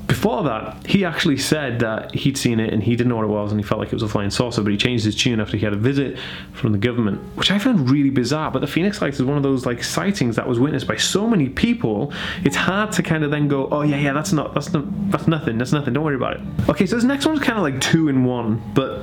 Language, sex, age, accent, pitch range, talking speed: English, male, 20-39, British, 115-150 Hz, 290 wpm